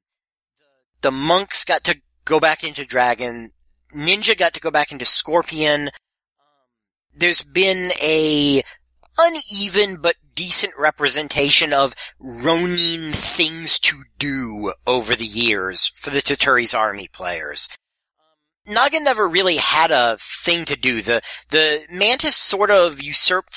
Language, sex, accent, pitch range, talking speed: English, male, American, 120-165 Hz, 125 wpm